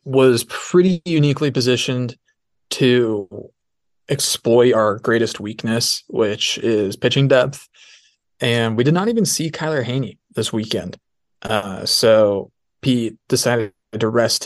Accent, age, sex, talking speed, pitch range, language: American, 20-39, male, 120 wpm, 110-125 Hz, English